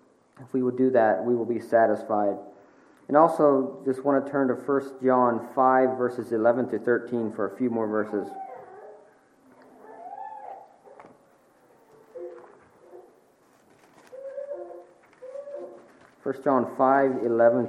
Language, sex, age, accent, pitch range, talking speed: English, male, 40-59, American, 115-140 Hz, 110 wpm